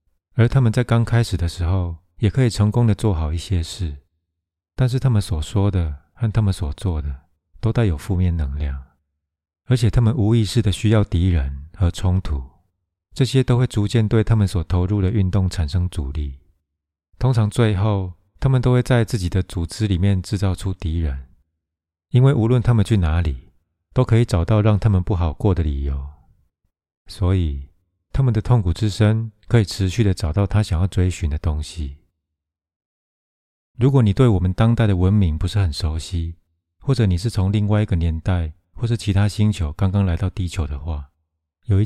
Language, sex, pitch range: Chinese, male, 80-110 Hz